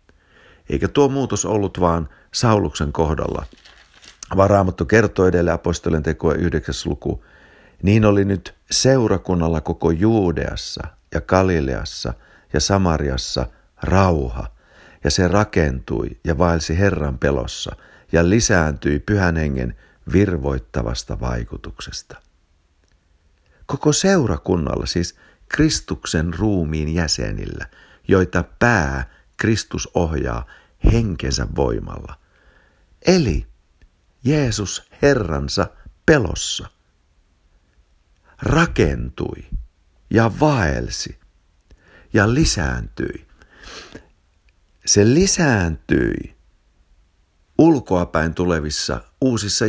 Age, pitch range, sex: 60-79, 75-105 Hz, male